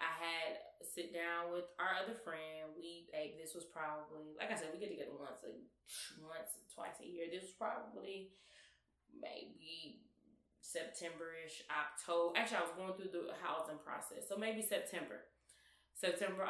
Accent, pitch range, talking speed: American, 155-195 Hz, 155 wpm